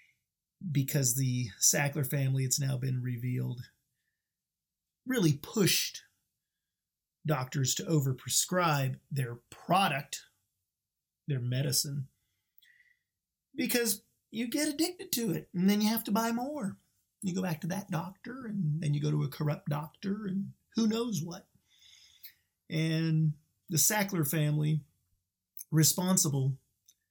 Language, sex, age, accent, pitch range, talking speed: English, male, 40-59, American, 130-190 Hz, 115 wpm